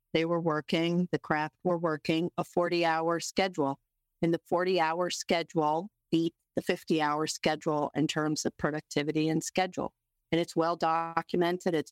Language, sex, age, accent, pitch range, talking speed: English, female, 40-59, American, 160-190 Hz, 140 wpm